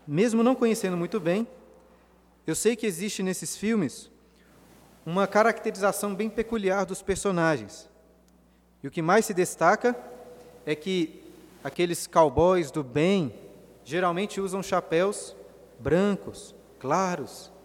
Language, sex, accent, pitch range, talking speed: Portuguese, male, Brazilian, 170-220 Hz, 115 wpm